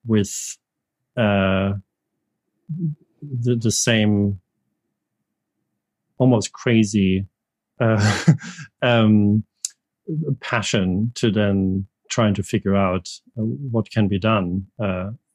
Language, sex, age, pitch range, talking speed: English, male, 40-59, 100-125 Hz, 85 wpm